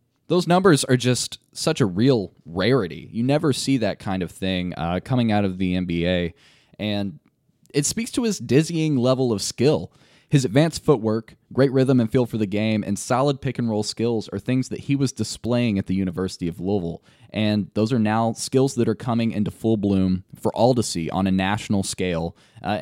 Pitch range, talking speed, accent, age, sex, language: 100-135 Hz, 195 wpm, American, 20-39, male, English